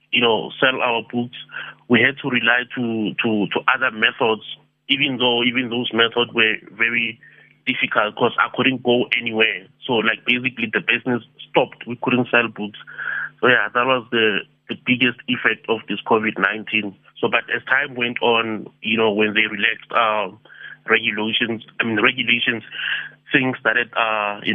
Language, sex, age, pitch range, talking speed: English, male, 30-49, 110-125 Hz, 170 wpm